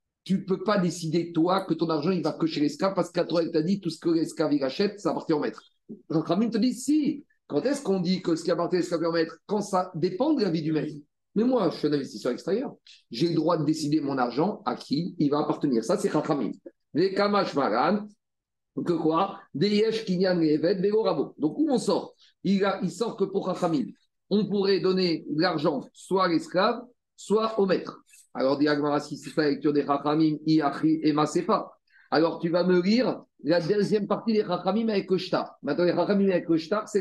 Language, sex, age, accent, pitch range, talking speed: French, male, 50-69, French, 160-200 Hz, 205 wpm